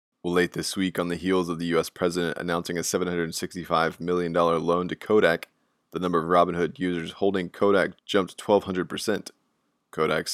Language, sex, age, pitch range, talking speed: English, male, 20-39, 85-95 Hz, 155 wpm